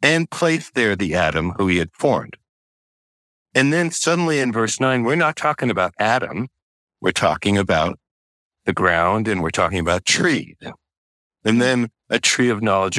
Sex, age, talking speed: male, 60-79, 165 wpm